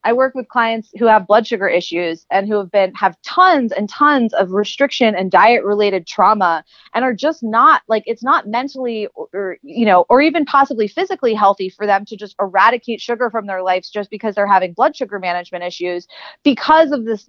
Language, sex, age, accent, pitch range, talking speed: English, female, 30-49, American, 195-250 Hz, 210 wpm